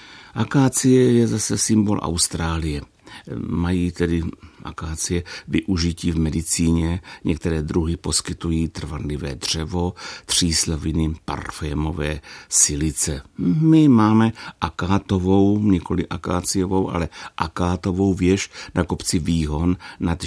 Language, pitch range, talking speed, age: Czech, 75-95 Hz, 90 wpm, 60-79